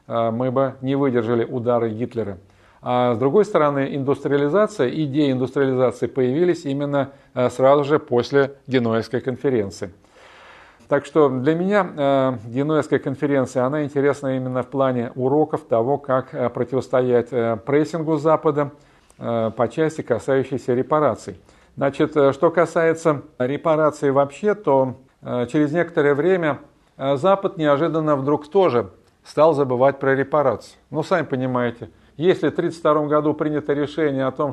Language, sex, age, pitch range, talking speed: Russian, male, 50-69, 130-155 Hz, 120 wpm